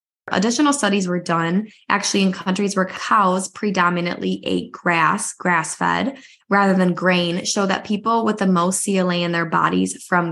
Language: English